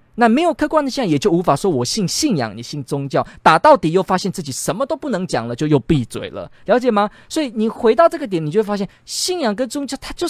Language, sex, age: Chinese, male, 20-39